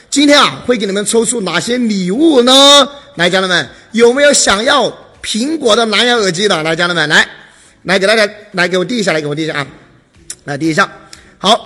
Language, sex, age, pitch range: Chinese, male, 30-49, 185-255 Hz